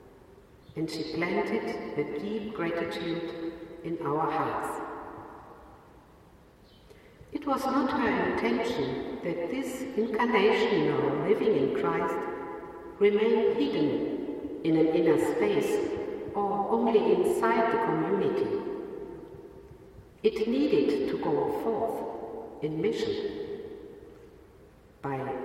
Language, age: English, 60-79